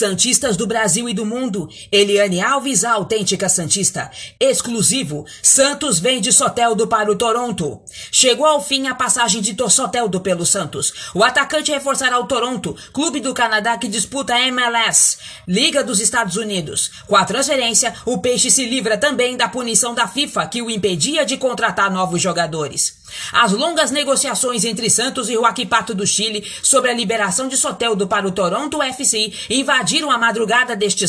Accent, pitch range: Brazilian, 210-265 Hz